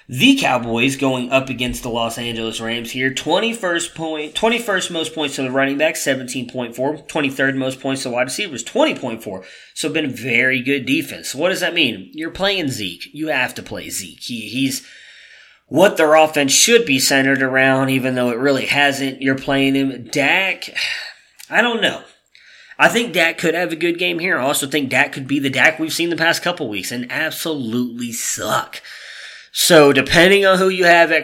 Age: 20-39